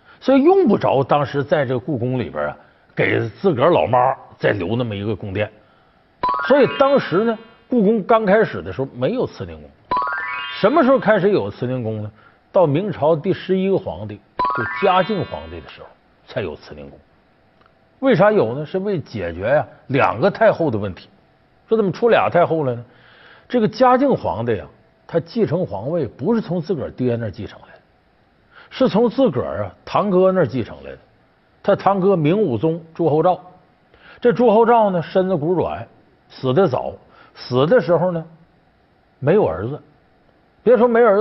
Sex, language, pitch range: male, Chinese, 125-200 Hz